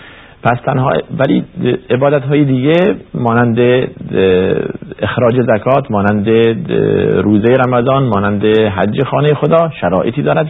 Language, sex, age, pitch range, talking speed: Persian, male, 50-69, 90-120 Hz, 90 wpm